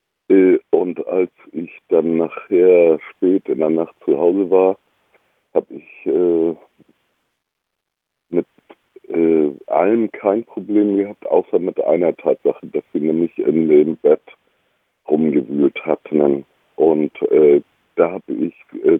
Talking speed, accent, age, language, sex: 125 wpm, German, 60-79, German, male